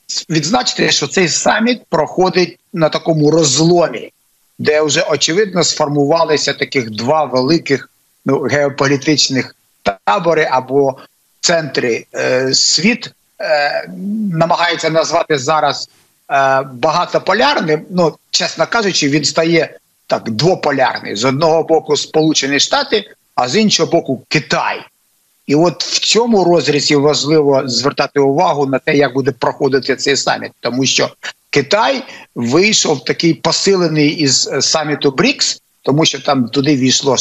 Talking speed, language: 120 wpm, Ukrainian